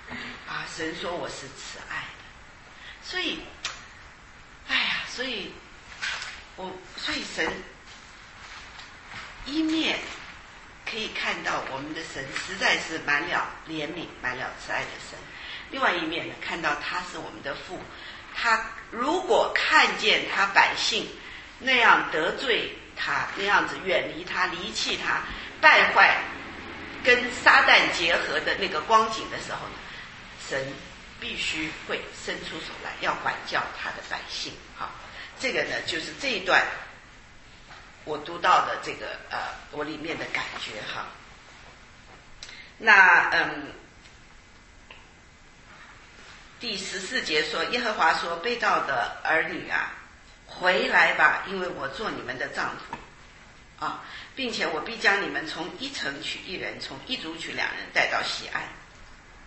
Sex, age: female, 50-69